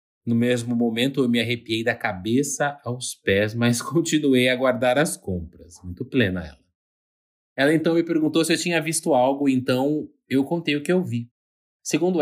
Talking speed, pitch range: 175 wpm, 110-135 Hz